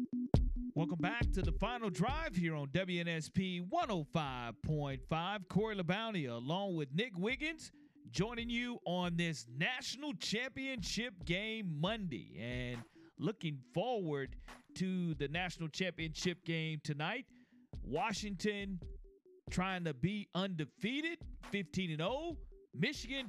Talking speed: 105 wpm